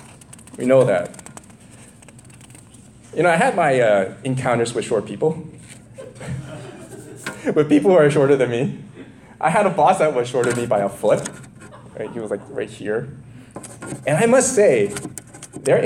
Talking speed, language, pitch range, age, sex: 165 wpm, English, 120-160 Hz, 20-39, male